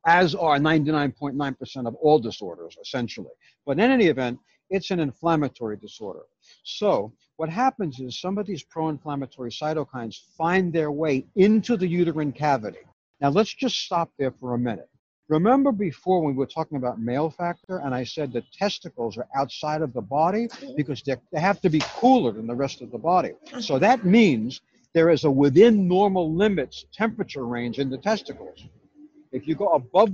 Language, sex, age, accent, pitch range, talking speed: English, male, 60-79, American, 135-190 Hz, 175 wpm